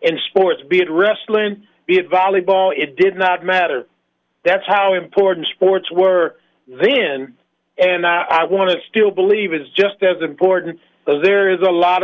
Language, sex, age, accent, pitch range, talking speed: English, male, 40-59, American, 175-195 Hz, 165 wpm